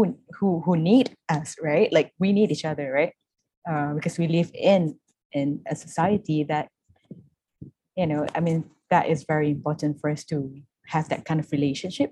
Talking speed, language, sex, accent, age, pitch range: 180 wpm, English, female, Malaysian, 20-39, 150-180 Hz